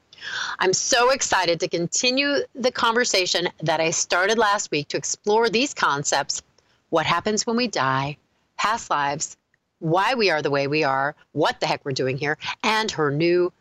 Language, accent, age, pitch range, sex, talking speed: English, American, 40-59, 140-185 Hz, female, 170 wpm